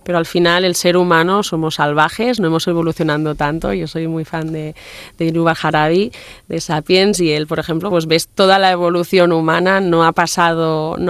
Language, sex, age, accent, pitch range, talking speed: Spanish, female, 20-39, Spanish, 155-175 Hz, 190 wpm